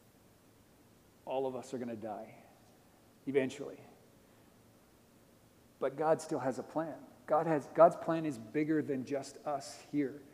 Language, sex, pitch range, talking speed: English, male, 125-145 Hz, 135 wpm